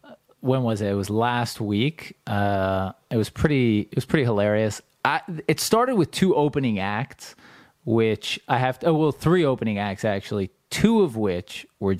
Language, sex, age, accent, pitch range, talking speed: English, male, 30-49, American, 100-135 Hz, 180 wpm